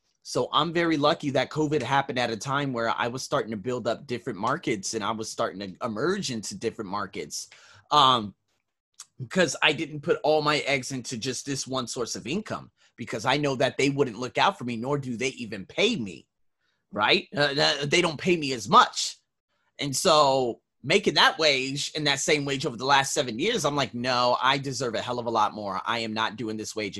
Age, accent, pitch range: 30-49, American, 120-155 Hz